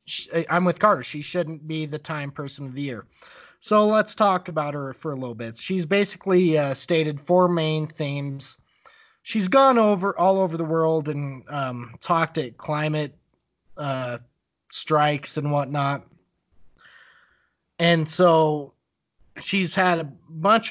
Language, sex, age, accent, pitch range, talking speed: English, male, 20-39, American, 145-180 Hz, 145 wpm